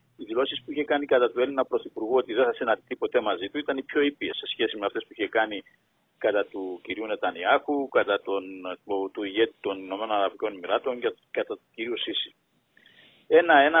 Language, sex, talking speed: Greek, male, 190 wpm